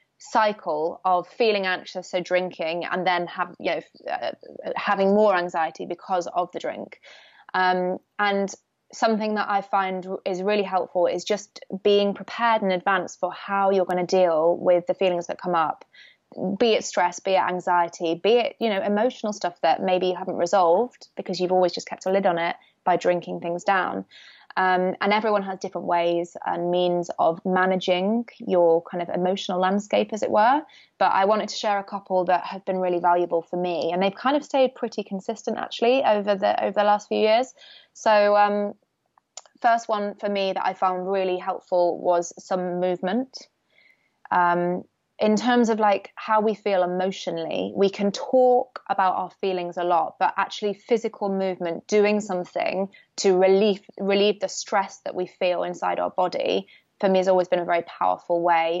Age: 20-39